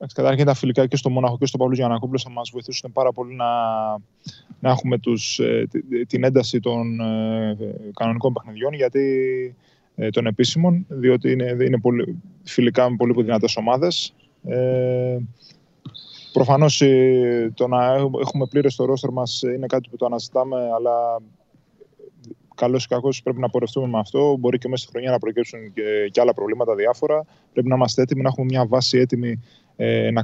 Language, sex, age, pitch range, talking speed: Greek, male, 20-39, 120-135 Hz, 155 wpm